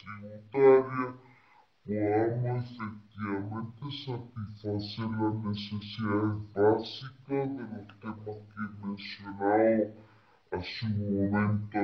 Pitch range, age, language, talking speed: 100-115 Hz, 60-79, Spanish, 75 wpm